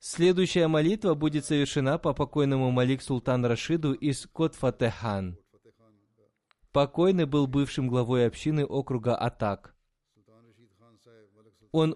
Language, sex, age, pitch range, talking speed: Russian, male, 20-39, 120-155 Hz, 90 wpm